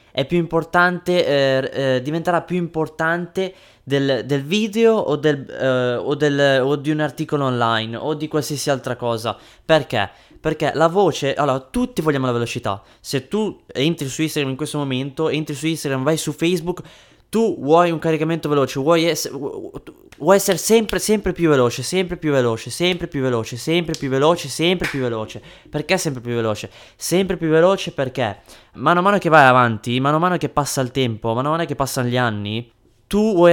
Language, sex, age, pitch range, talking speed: Italian, male, 20-39, 130-175 Hz, 180 wpm